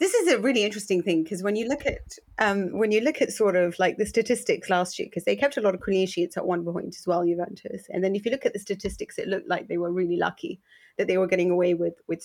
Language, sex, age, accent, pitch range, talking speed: English, female, 30-49, British, 175-195 Hz, 290 wpm